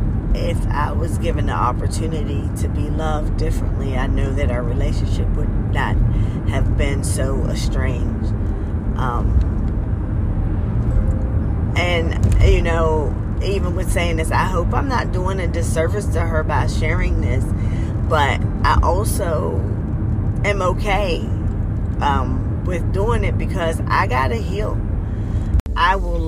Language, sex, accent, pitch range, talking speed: English, female, American, 80-105 Hz, 130 wpm